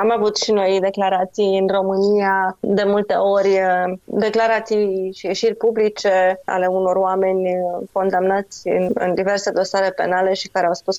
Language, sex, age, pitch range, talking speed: Romanian, female, 20-39, 195-230 Hz, 140 wpm